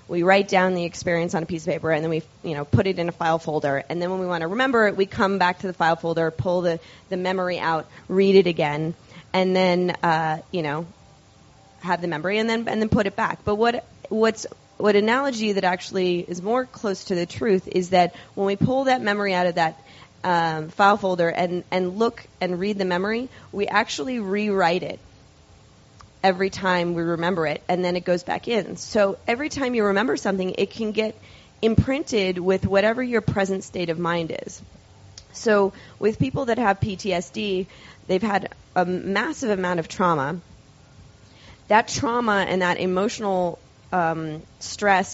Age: 20-39